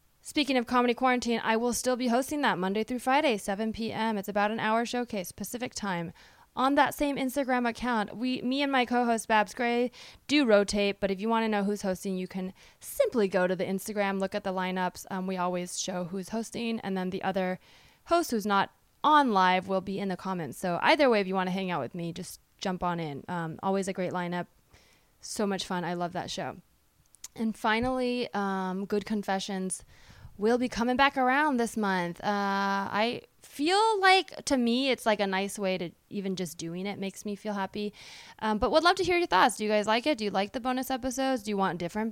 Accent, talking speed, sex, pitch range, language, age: American, 225 wpm, female, 190-245 Hz, English, 20-39